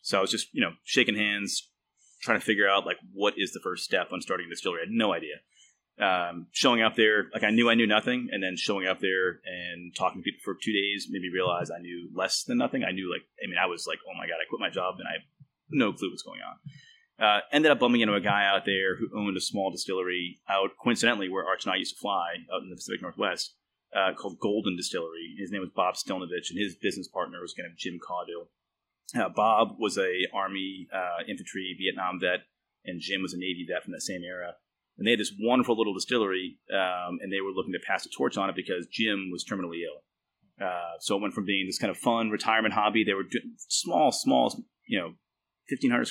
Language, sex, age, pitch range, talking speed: English, male, 30-49, 90-110 Hz, 245 wpm